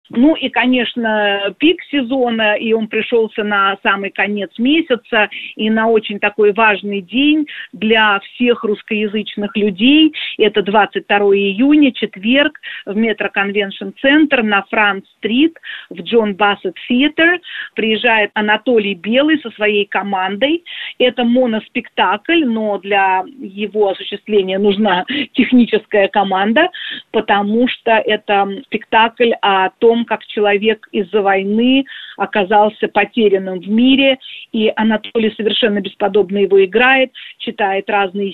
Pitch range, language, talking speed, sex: 205-245 Hz, Russian, 110 wpm, female